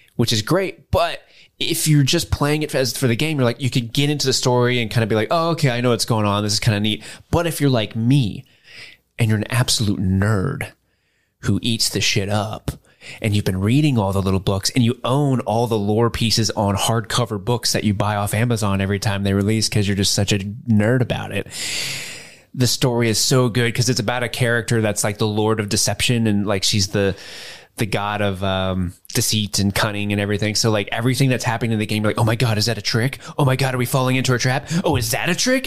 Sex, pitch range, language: male, 105-140 Hz, English